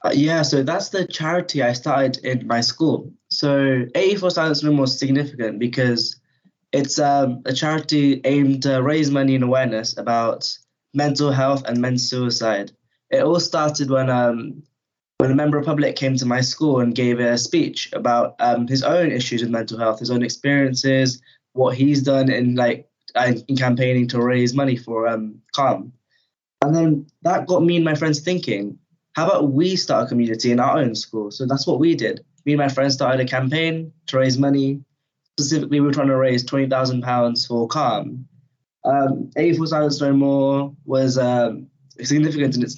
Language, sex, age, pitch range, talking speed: English, male, 10-29, 125-145 Hz, 180 wpm